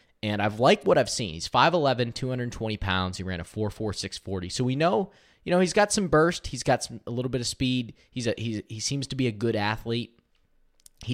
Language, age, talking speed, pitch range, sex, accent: English, 20-39, 230 wpm, 95-130 Hz, male, American